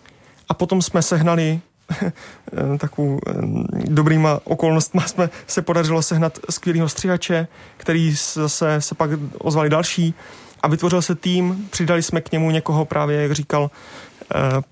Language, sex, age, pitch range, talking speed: Czech, male, 30-49, 150-170 Hz, 130 wpm